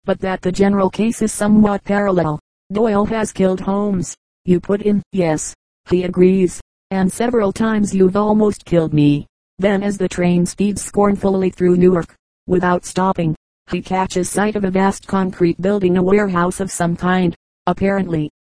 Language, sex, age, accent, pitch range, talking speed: English, female, 40-59, American, 180-205 Hz, 160 wpm